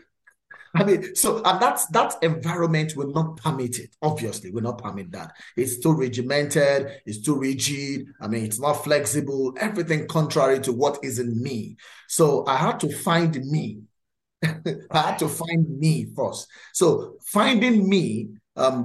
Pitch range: 125-170 Hz